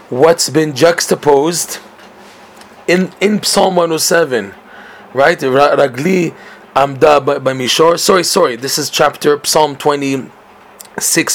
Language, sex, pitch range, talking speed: English, male, 135-180 Hz, 90 wpm